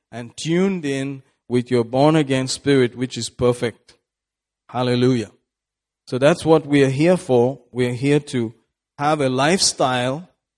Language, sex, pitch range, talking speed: English, male, 120-145 Hz, 145 wpm